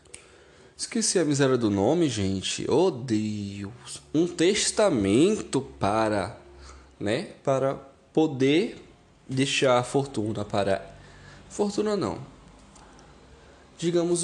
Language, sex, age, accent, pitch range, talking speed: Portuguese, male, 10-29, Brazilian, 110-140 Hz, 90 wpm